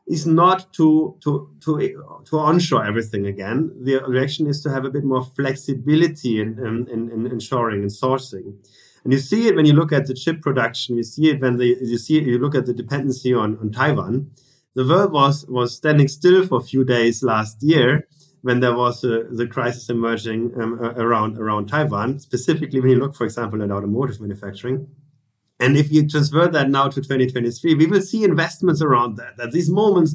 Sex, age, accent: male, 30-49, German